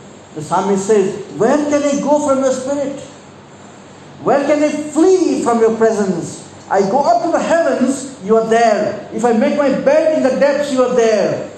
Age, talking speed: 50-69, 190 wpm